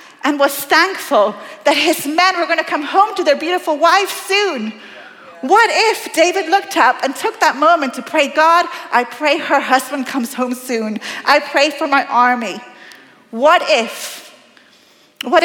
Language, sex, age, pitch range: English, female, 40-59, 240-335 Hz